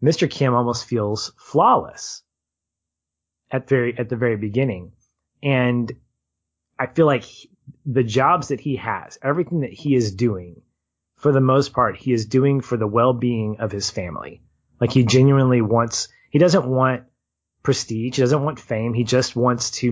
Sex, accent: male, American